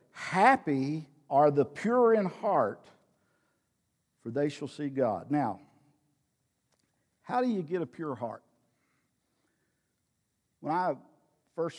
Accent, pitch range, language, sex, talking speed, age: American, 125-155 Hz, English, male, 110 wpm, 50-69